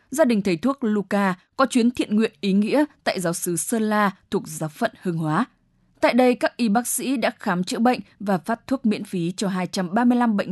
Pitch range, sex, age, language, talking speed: 175-235 Hz, female, 10-29, English, 220 wpm